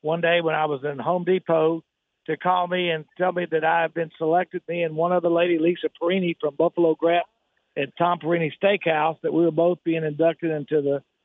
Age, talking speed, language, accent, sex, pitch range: 50-69, 220 wpm, English, American, male, 155-175 Hz